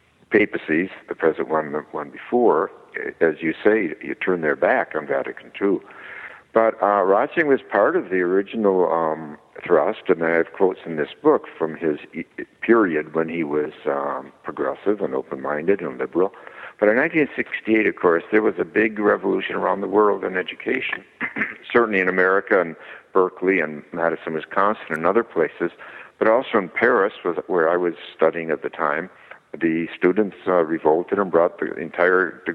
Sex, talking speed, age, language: male, 170 wpm, 60-79, English